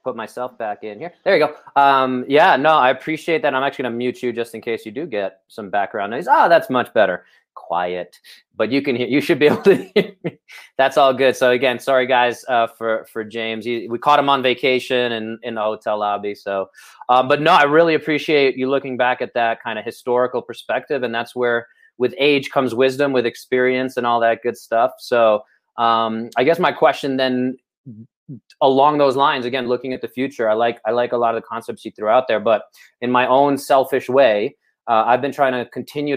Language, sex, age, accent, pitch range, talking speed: English, male, 20-39, American, 115-135 Hz, 225 wpm